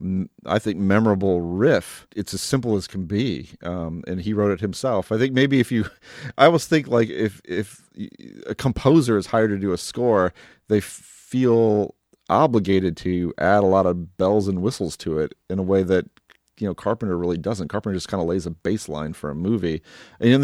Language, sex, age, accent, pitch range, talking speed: English, male, 40-59, American, 90-110 Hz, 205 wpm